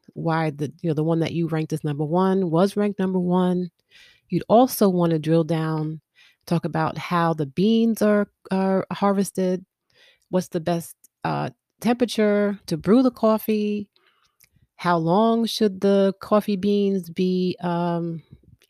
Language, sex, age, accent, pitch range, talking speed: English, female, 30-49, American, 155-185 Hz, 150 wpm